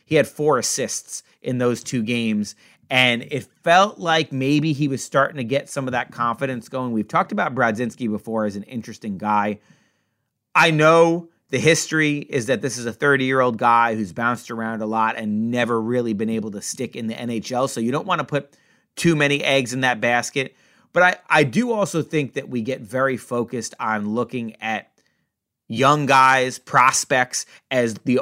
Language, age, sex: English, 30-49, male